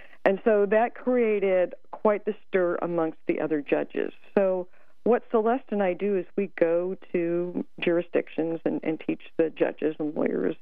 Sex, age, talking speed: female, 50-69, 165 wpm